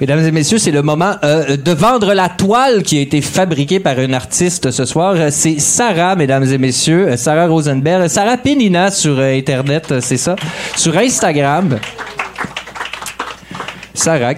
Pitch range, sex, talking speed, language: 135-185 Hz, male, 155 wpm, French